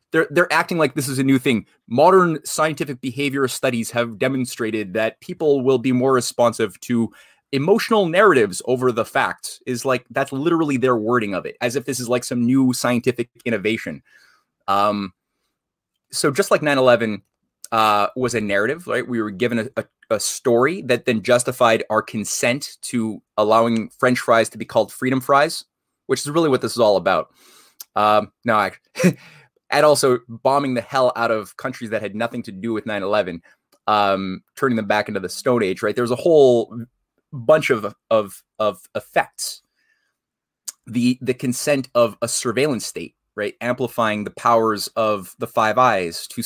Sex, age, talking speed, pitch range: male, 20-39, 175 wpm, 110-130 Hz